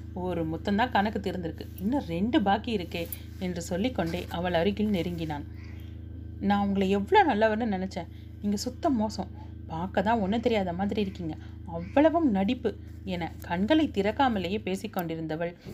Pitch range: 170-225 Hz